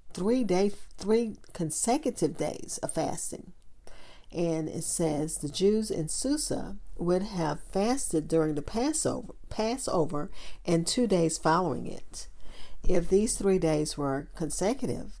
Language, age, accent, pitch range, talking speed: English, 50-69, American, 155-195 Hz, 125 wpm